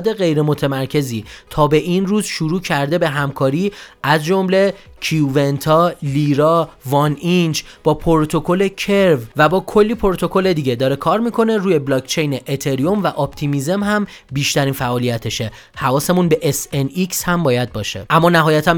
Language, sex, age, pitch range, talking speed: Persian, male, 30-49, 135-175 Hz, 135 wpm